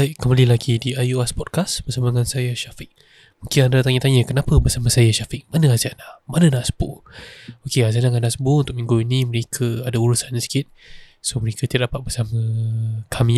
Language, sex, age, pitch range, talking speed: Malay, male, 20-39, 120-135 Hz, 175 wpm